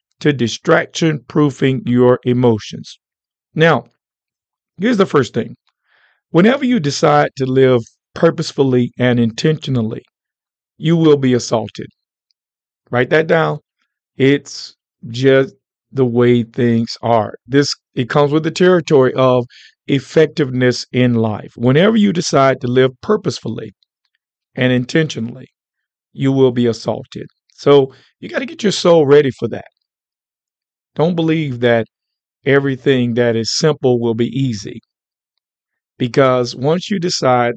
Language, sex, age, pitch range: English, male, 50-69, 125-155 Hz